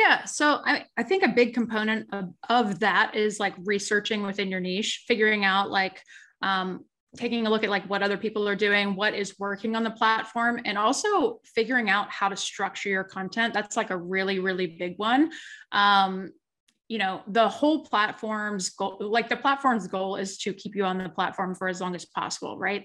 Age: 20-39